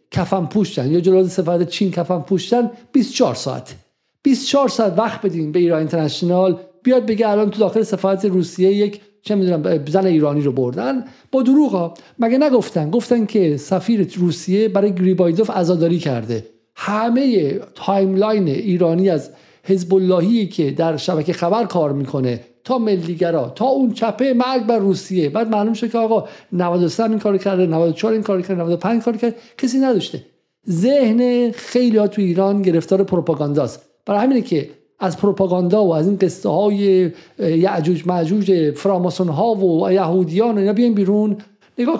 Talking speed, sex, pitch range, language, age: 155 wpm, male, 180-230 Hz, Persian, 50-69